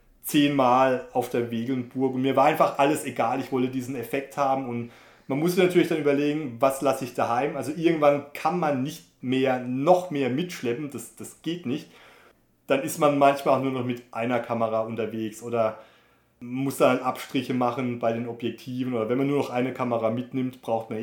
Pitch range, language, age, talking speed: 125-150 Hz, German, 30-49, 190 wpm